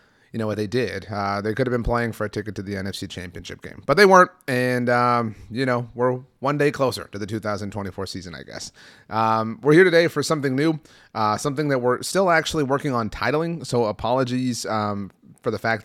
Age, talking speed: 30-49, 220 wpm